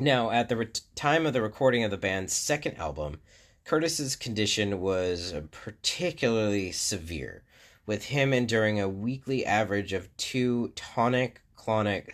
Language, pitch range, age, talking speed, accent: English, 95-120 Hz, 30-49, 130 wpm, American